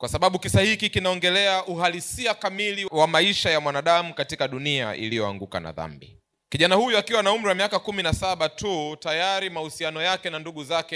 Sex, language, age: male, Swahili, 30-49